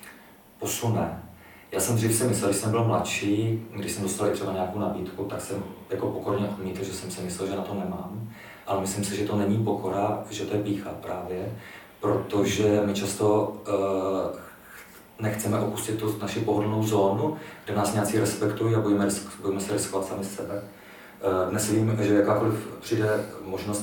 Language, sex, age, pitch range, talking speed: Czech, male, 40-59, 95-105 Hz, 170 wpm